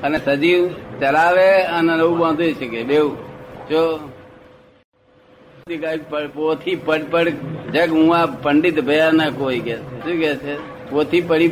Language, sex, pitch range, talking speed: Gujarati, male, 140-160 Hz, 50 wpm